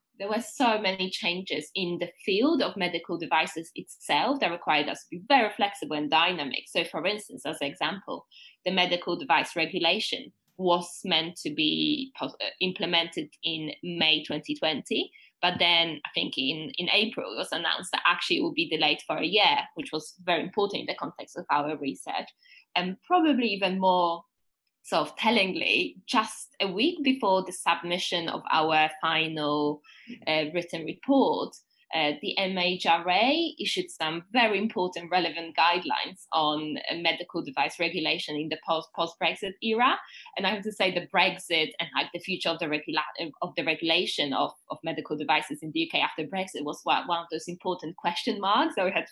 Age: 10-29